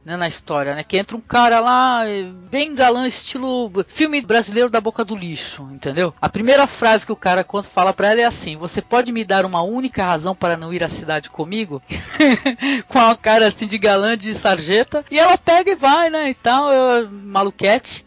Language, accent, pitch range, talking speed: Portuguese, Brazilian, 170-240 Hz, 205 wpm